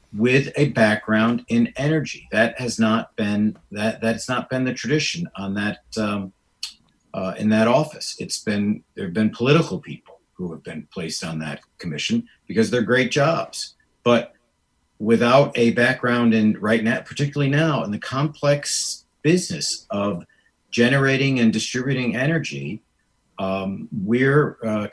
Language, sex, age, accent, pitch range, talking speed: English, male, 50-69, American, 105-140 Hz, 160 wpm